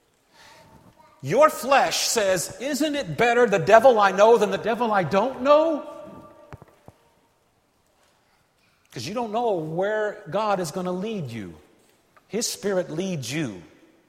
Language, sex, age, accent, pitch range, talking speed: English, male, 50-69, American, 145-235 Hz, 130 wpm